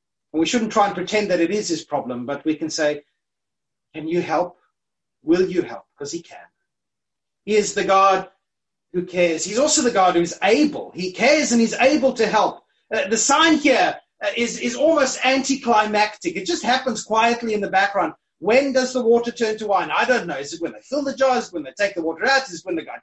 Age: 30-49